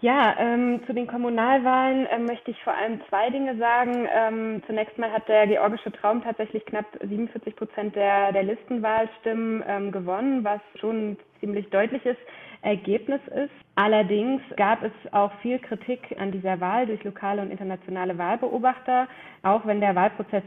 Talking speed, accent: 160 wpm, German